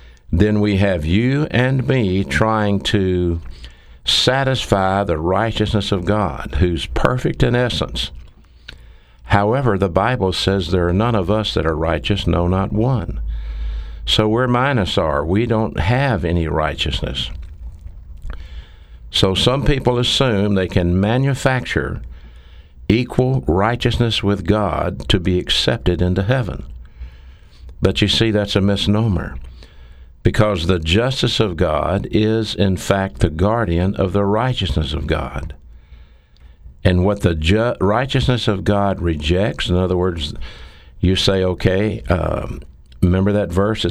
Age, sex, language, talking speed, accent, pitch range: 60-79, male, English, 130 wpm, American, 80-105 Hz